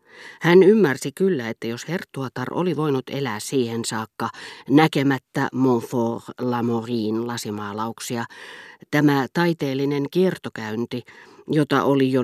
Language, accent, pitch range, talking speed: Finnish, native, 120-155 Hz, 110 wpm